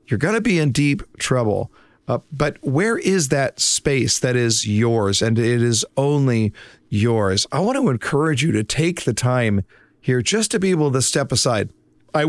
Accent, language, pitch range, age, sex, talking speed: American, English, 130-175 Hz, 40-59, male, 190 wpm